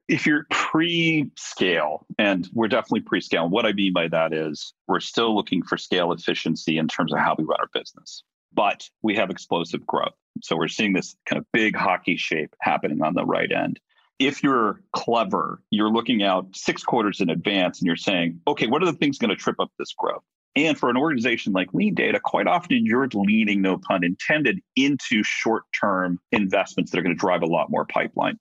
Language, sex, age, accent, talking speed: English, male, 40-59, American, 205 wpm